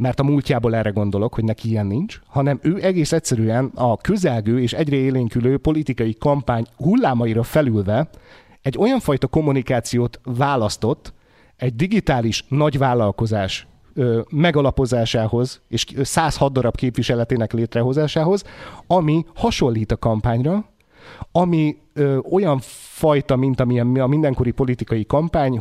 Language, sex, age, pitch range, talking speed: Hungarian, male, 30-49, 120-150 Hz, 115 wpm